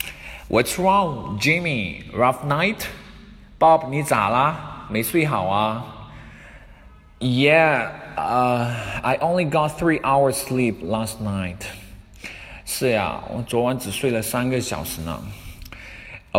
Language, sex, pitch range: Chinese, male, 100-155 Hz